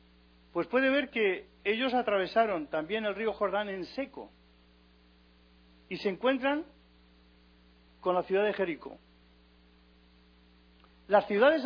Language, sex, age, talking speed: English, male, 40-59, 115 wpm